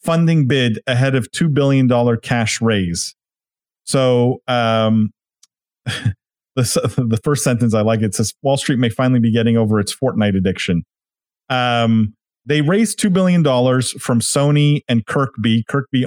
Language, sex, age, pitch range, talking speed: English, male, 40-59, 110-135 Hz, 140 wpm